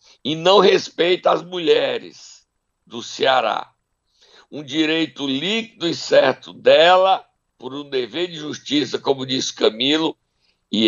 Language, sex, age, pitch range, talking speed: Portuguese, male, 60-79, 140-210 Hz, 120 wpm